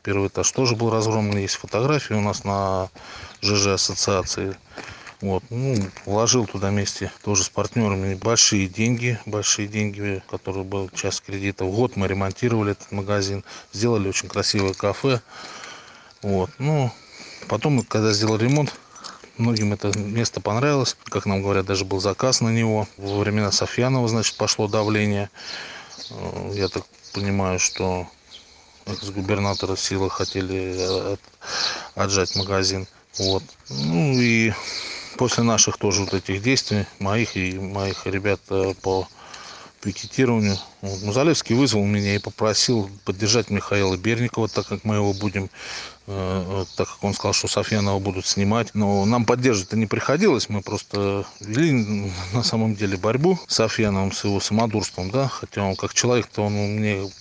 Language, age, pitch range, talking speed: Russian, 20-39, 95-110 Hz, 135 wpm